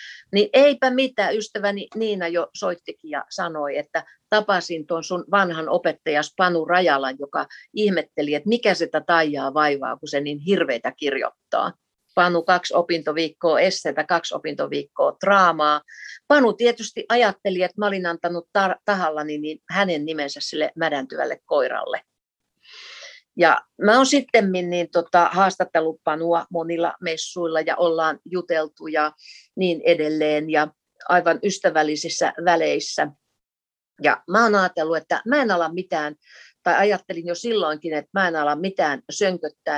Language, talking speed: Finnish, 130 wpm